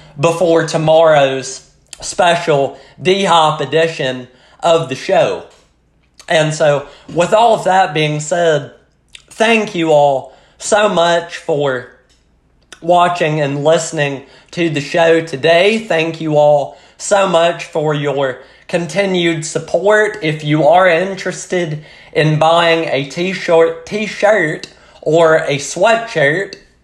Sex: male